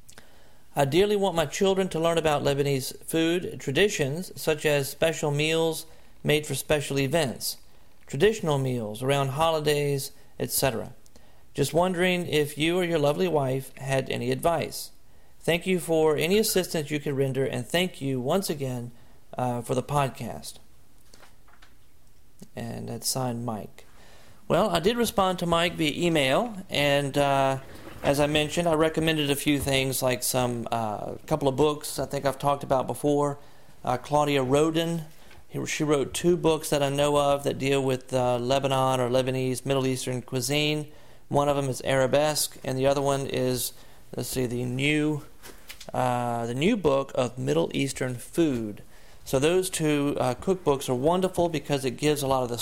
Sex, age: male, 40-59